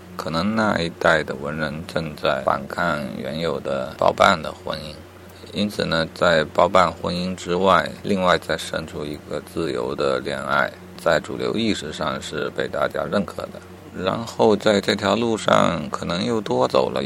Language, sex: Chinese, male